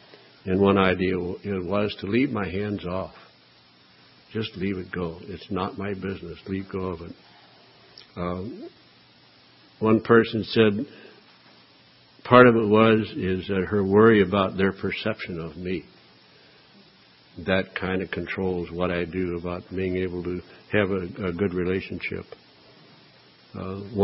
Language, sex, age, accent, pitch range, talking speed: English, male, 60-79, American, 90-105 Hz, 135 wpm